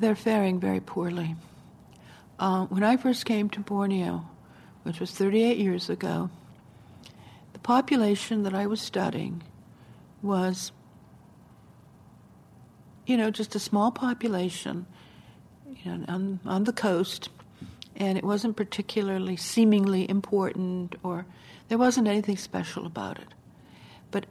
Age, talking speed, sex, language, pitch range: 60-79, 120 wpm, female, English, 185-215 Hz